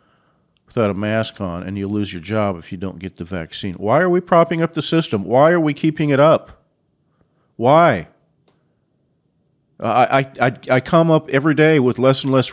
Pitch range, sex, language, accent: 105-140 Hz, male, English, American